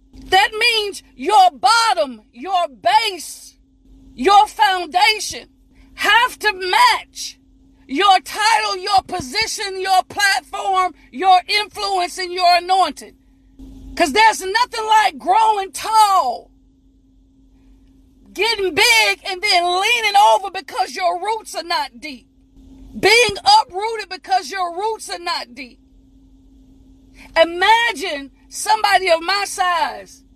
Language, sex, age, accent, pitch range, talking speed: English, female, 40-59, American, 270-390 Hz, 105 wpm